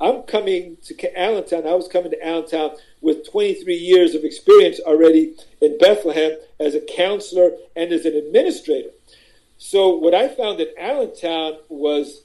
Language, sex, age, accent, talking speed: English, male, 50-69, American, 150 wpm